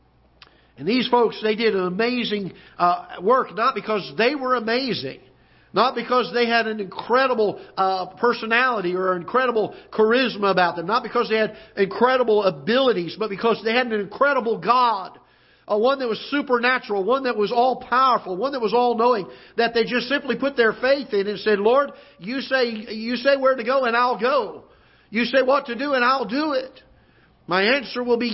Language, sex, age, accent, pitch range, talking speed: English, male, 50-69, American, 190-245 Hz, 185 wpm